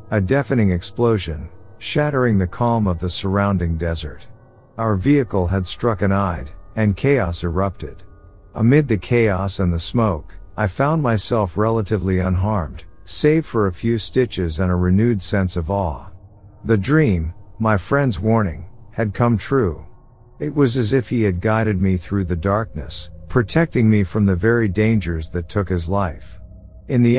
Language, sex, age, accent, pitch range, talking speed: English, male, 50-69, American, 90-115 Hz, 160 wpm